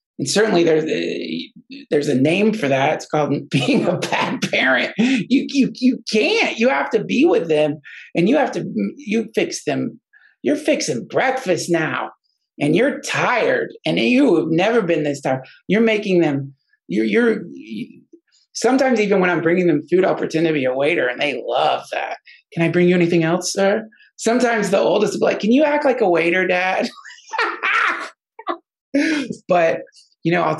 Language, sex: English, male